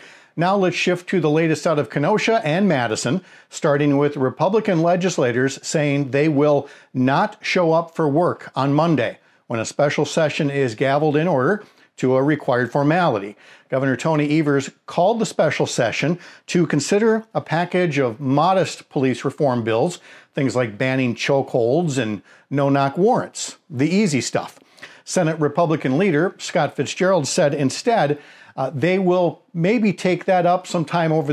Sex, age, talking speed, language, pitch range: male, 50-69, 150 wpm, English, 135-175 Hz